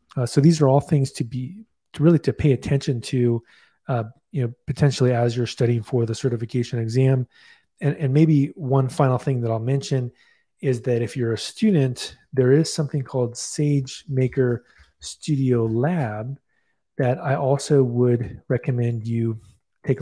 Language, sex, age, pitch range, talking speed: English, male, 30-49, 120-140 Hz, 160 wpm